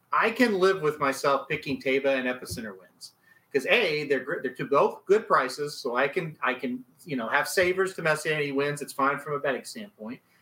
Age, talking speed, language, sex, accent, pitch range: 30-49, 220 wpm, English, male, American, 145-220 Hz